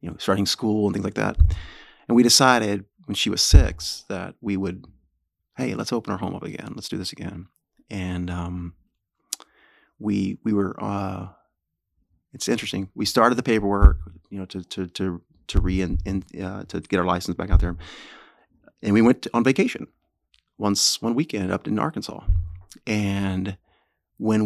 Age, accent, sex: 30-49, American, male